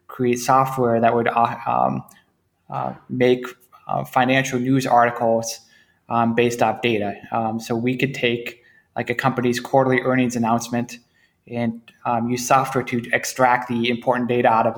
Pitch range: 115-125 Hz